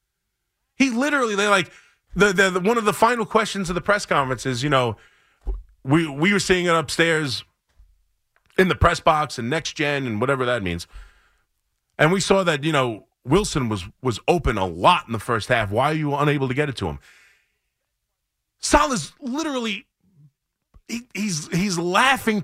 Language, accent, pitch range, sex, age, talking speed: English, American, 160-240 Hz, male, 30-49, 185 wpm